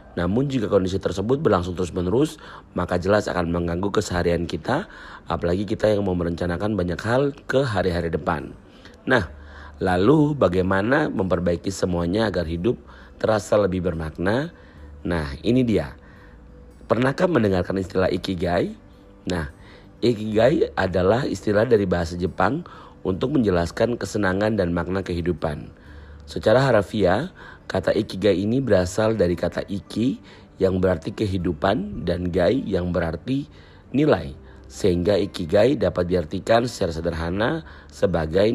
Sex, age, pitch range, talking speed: male, 40-59, 85-100 Hz, 120 wpm